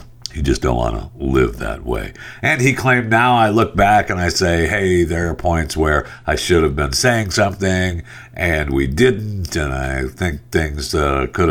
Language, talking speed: English, 200 wpm